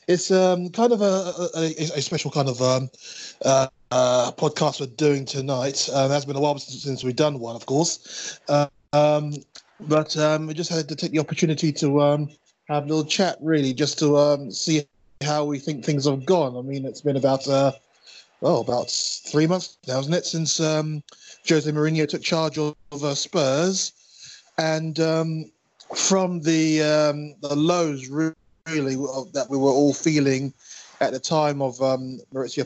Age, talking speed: 20-39, 180 wpm